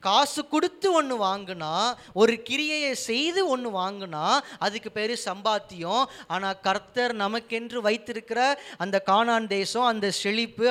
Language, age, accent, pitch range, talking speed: Tamil, 20-39, native, 175-240 Hz, 120 wpm